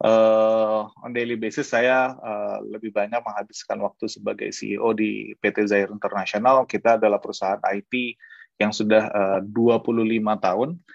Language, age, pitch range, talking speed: Indonesian, 20-39, 105-120 Hz, 135 wpm